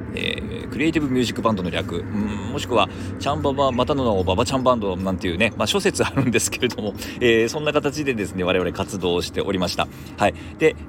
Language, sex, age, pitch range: Japanese, male, 40-59, 90-130 Hz